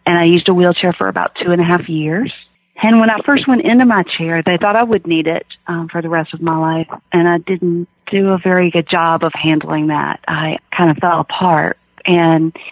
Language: English